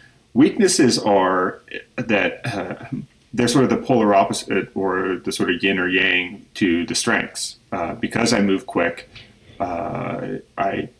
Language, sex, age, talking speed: English, male, 30-49, 145 wpm